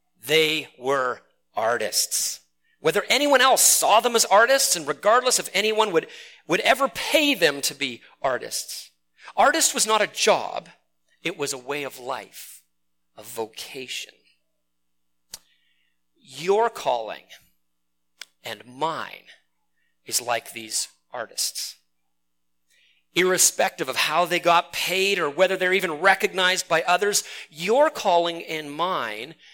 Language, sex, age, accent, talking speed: English, male, 40-59, American, 120 wpm